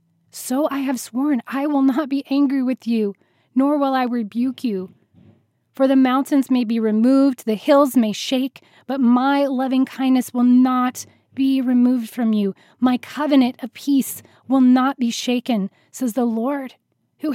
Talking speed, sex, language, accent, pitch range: 165 wpm, female, English, American, 230-280 Hz